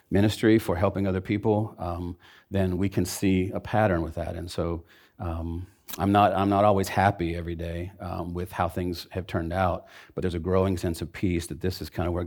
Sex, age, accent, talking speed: male, 40-59, American, 220 wpm